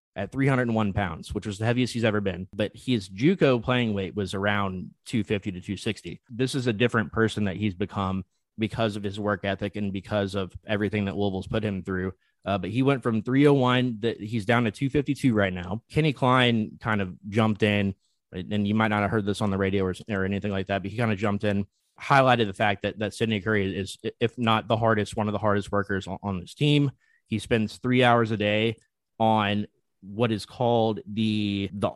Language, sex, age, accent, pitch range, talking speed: English, male, 20-39, American, 100-115 Hz, 215 wpm